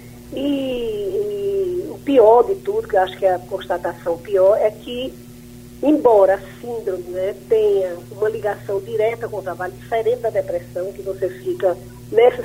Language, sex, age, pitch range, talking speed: Portuguese, female, 40-59, 175-275 Hz, 165 wpm